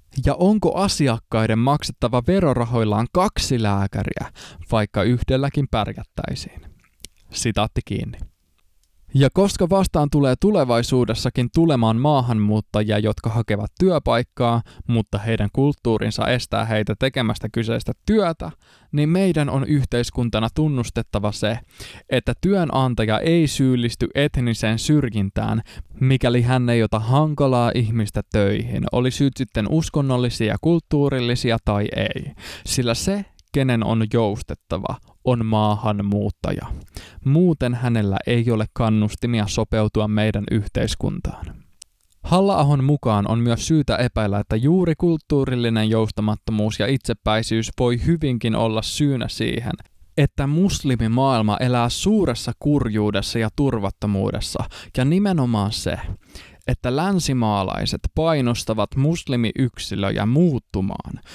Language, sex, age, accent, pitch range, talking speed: Finnish, male, 20-39, native, 110-140 Hz, 100 wpm